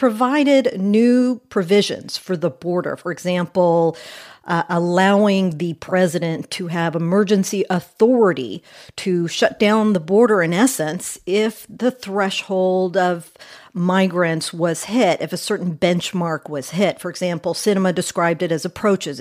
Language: English